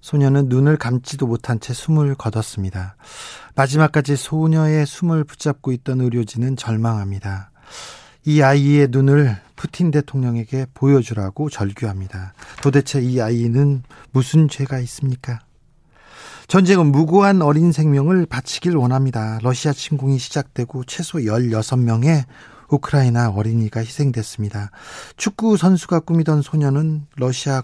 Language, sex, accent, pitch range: Korean, male, native, 120-150 Hz